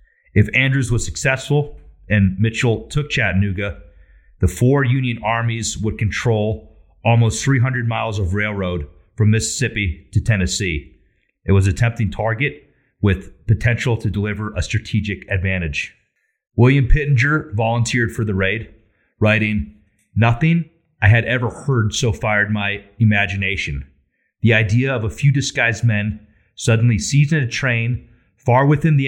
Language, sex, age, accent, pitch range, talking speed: English, male, 30-49, American, 100-125 Hz, 135 wpm